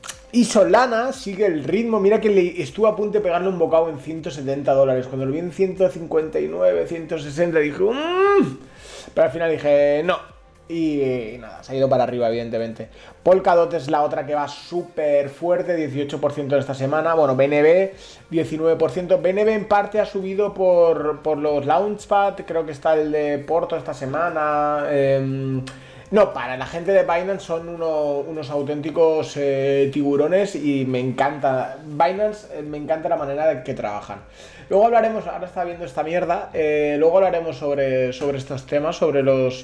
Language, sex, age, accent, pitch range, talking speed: Spanish, male, 30-49, Spanish, 135-175 Hz, 170 wpm